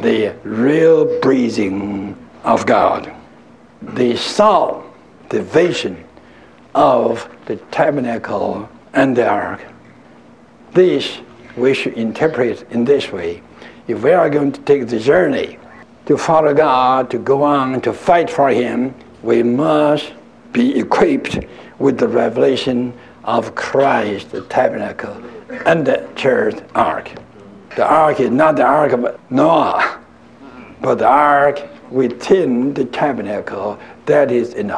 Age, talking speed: 60-79, 125 wpm